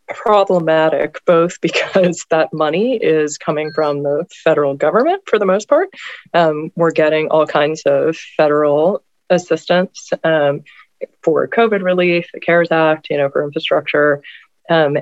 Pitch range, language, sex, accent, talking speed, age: 145-175 Hz, English, female, American, 140 wpm, 20-39